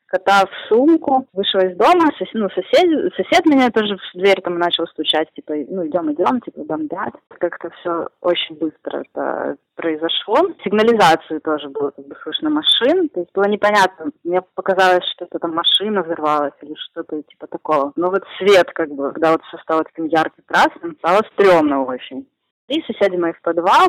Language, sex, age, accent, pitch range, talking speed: Ukrainian, female, 20-39, native, 165-205 Hz, 170 wpm